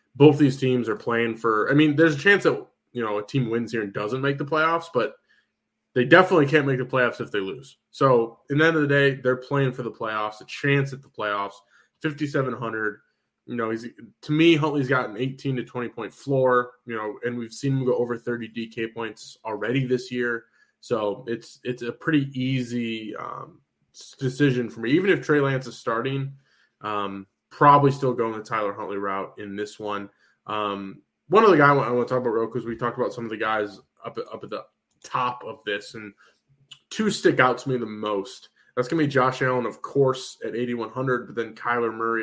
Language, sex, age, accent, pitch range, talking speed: English, male, 20-39, American, 110-135 Hz, 220 wpm